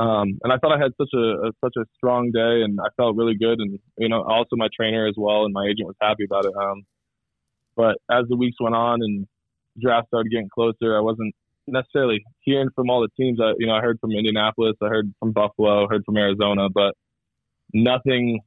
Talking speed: 225 wpm